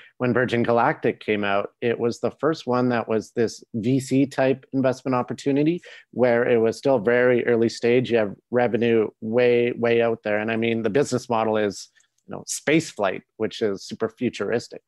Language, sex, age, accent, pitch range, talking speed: English, male, 30-49, American, 110-125 Hz, 185 wpm